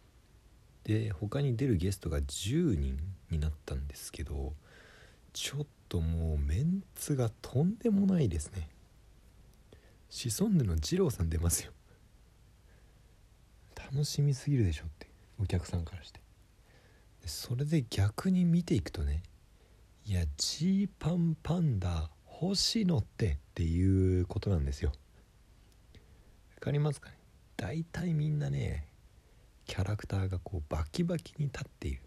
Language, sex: Japanese, male